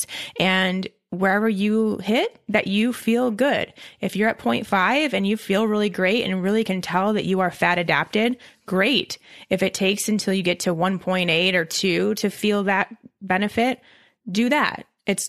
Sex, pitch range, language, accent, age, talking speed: female, 180-210 Hz, English, American, 20-39, 175 wpm